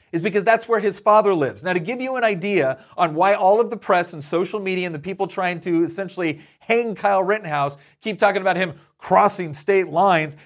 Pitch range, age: 165-205 Hz, 30-49